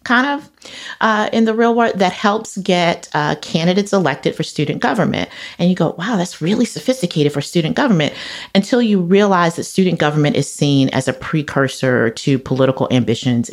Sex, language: female, English